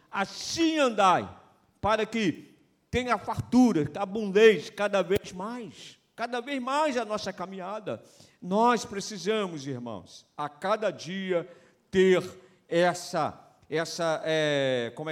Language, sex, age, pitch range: Portuguese, male, 50-69, 170-215 Hz